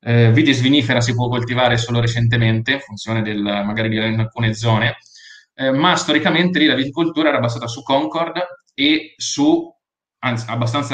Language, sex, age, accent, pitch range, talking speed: Italian, male, 30-49, native, 115-150 Hz, 160 wpm